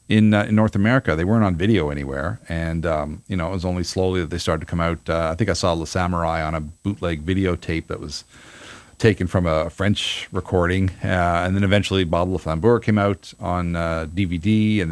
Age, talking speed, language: 40-59, 215 wpm, English